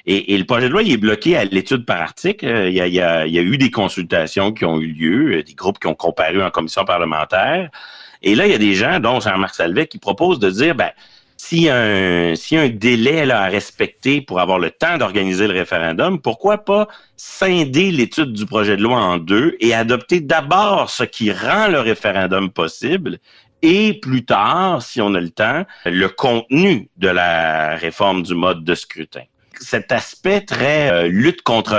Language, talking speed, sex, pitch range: French, 210 wpm, male, 90-125 Hz